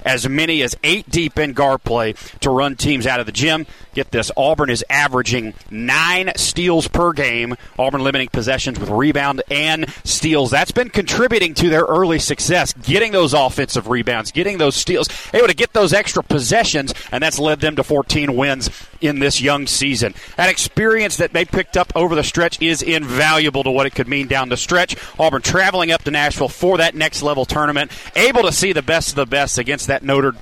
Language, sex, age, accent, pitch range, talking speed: English, male, 30-49, American, 130-180 Hz, 200 wpm